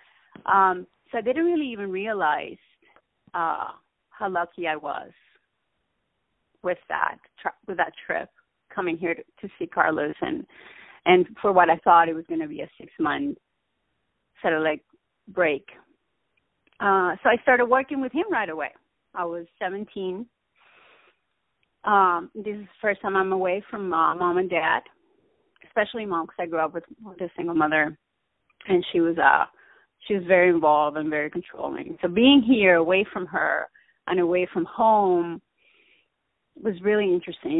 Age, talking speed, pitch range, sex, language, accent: 30-49, 160 wpm, 180-255 Hz, female, English, American